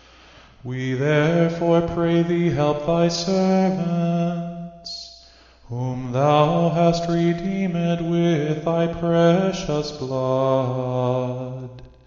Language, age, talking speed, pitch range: English, 20-39, 75 wpm, 125-170 Hz